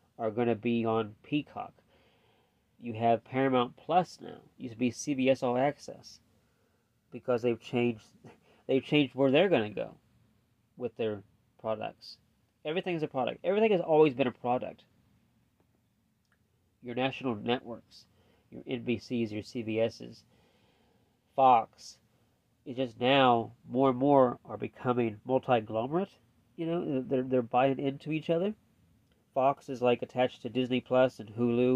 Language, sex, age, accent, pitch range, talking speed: English, male, 30-49, American, 110-130 Hz, 140 wpm